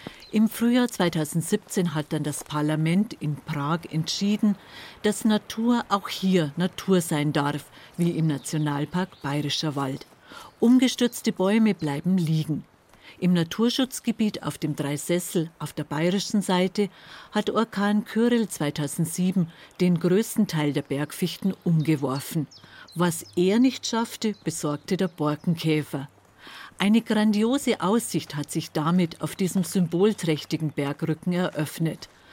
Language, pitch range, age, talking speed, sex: German, 155-205 Hz, 50-69, 115 wpm, female